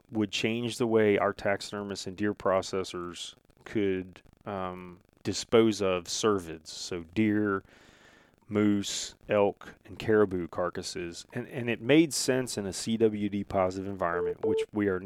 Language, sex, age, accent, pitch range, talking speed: English, male, 30-49, American, 95-115 Hz, 130 wpm